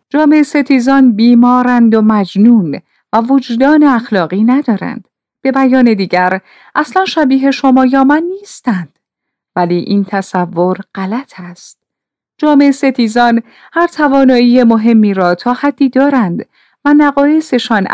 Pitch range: 185-270 Hz